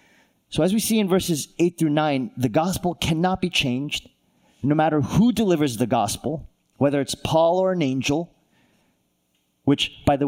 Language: English